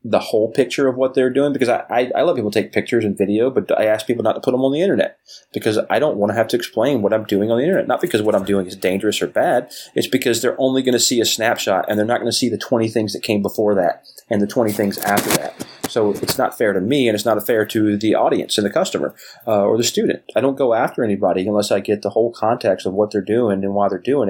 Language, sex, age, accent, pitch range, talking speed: English, male, 30-49, American, 95-110 Hz, 295 wpm